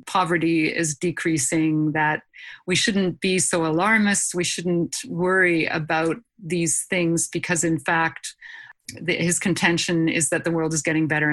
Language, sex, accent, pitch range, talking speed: English, female, American, 165-195 Hz, 145 wpm